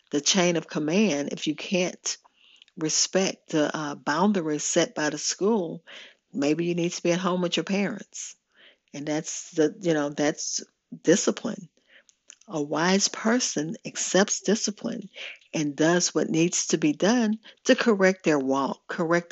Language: English